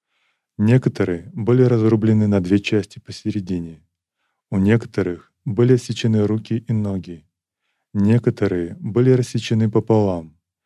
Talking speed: 100 wpm